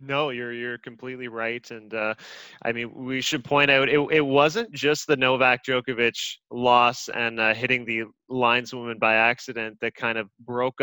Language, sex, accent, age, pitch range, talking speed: English, male, American, 20-39, 115-140 Hz, 175 wpm